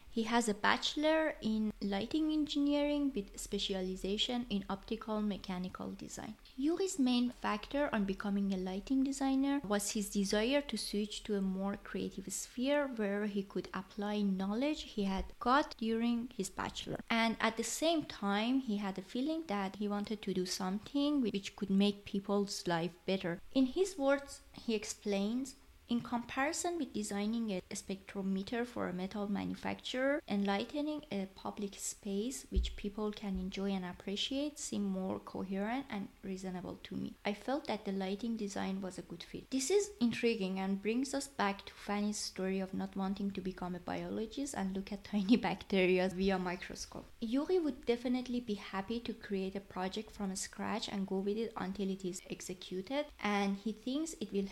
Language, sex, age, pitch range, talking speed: English, female, 20-39, 195-250 Hz, 170 wpm